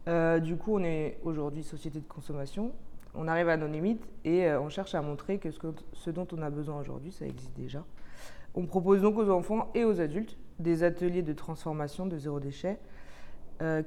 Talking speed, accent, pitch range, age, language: 210 wpm, French, 150-180 Hz, 20-39, French